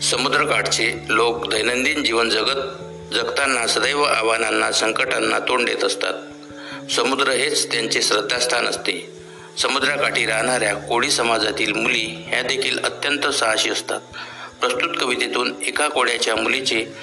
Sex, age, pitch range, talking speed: male, 60-79, 175-235 Hz, 110 wpm